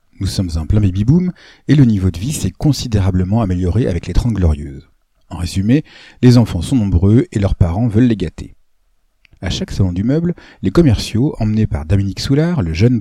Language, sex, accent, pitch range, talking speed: French, male, French, 90-125 Hz, 195 wpm